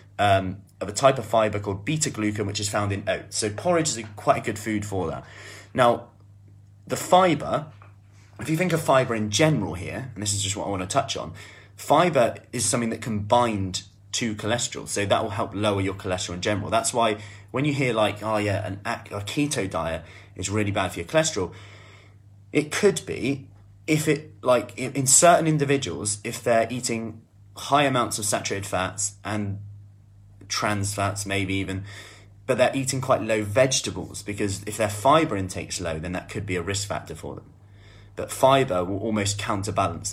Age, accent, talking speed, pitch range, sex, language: 30-49, British, 185 wpm, 100-115 Hz, male, English